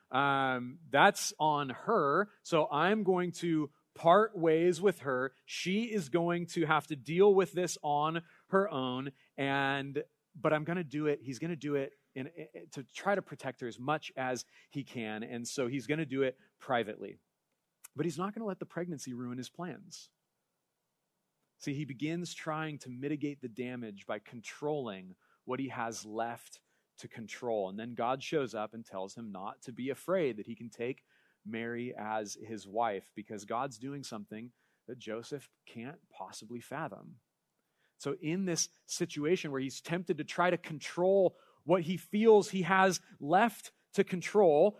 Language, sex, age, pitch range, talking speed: English, male, 30-49, 125-175 Hz, 175 wpm